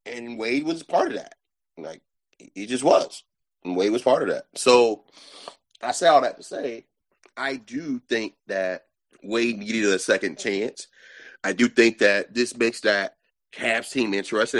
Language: English